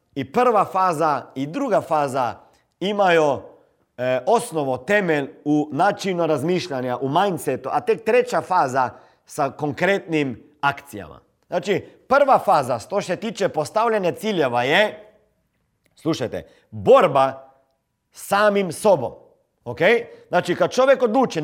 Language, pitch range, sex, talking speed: Croatian, 155-235 Hz, male, 120 wpm